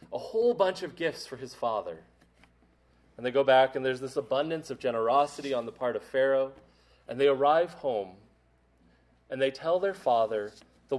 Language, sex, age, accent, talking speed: English, male, 30-49, American, 180 wpm